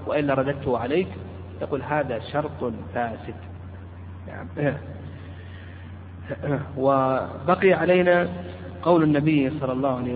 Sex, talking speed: male, 90 wpm